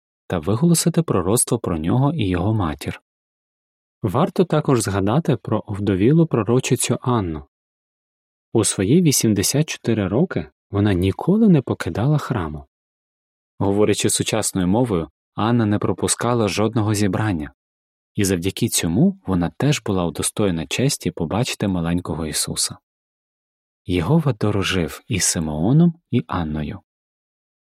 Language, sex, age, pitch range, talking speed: Ukrainian, male, 30-49, 90-140 Hz, 105 wpm